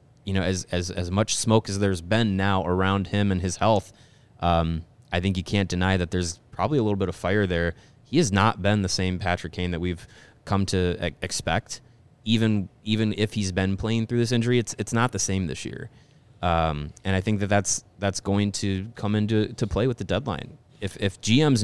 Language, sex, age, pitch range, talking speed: English, male, 20-39, 95-110 Hz, 220 wpm